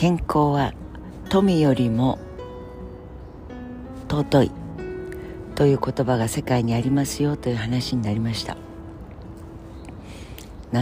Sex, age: female, 50-69